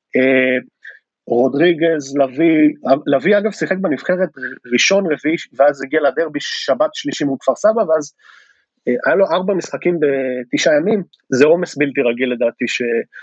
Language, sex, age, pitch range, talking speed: Hebrew, male, 30-49, 140-220 Hz, 125 wpm